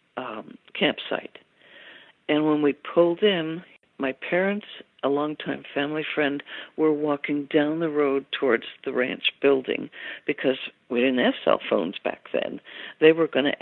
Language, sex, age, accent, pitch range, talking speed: English, female, 60-79, American, 135-155 Hz, 150 wpm